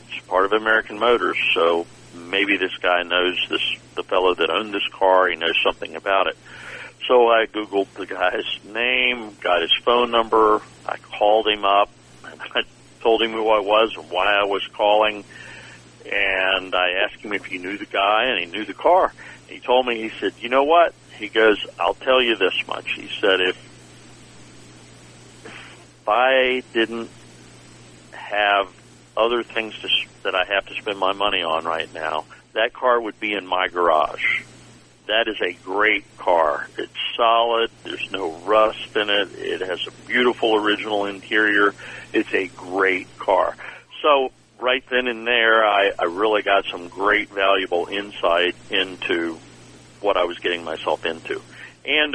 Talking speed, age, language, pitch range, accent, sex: 170 wpm, 50-69, English, 90-115 Hz, American, male